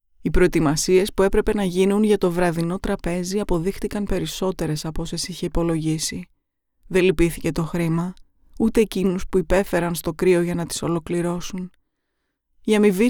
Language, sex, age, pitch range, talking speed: Greek, female, 20-39, 175-210 Hz, 145 wpm